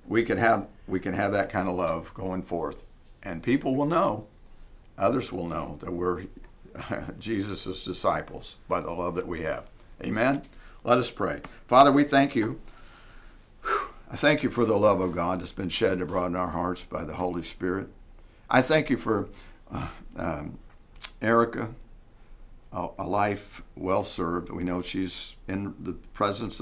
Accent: American